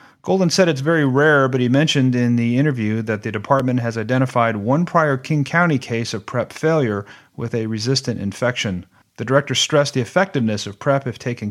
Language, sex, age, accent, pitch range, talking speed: English, male, 40-59, American, 115-145 Hz, 195 wpm